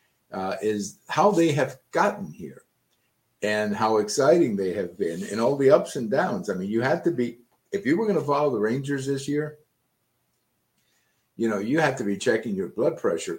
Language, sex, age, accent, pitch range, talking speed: English, male, 50-69, American, 100-140 Hz, 200 wpm